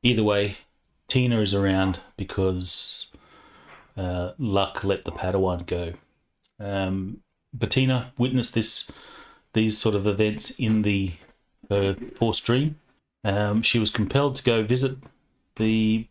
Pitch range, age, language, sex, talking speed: 95-120 Hz, 30-49, English, male, 125 wpm